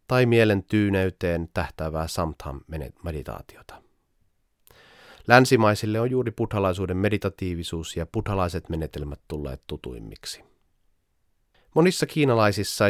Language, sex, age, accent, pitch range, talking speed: Finnish, male, 30-49, native, 85-115 Hz, 80 wpm